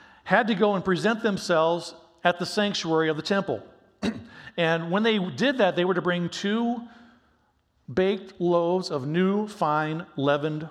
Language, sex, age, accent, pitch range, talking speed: English, male, 50-69, American, 150-185 Hz, 155 wpm